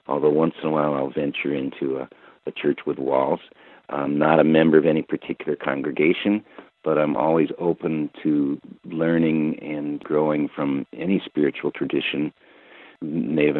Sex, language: male, English